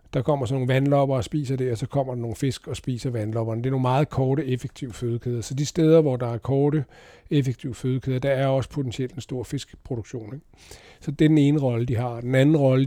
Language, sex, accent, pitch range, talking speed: Danish, male, native, 125-145 Hz, 240 wpm